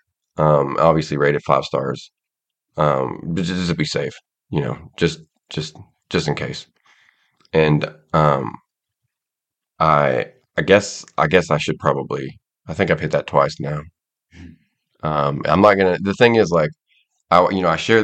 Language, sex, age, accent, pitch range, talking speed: English, male, 30-49, American, 75-85 Hz, 165 wpm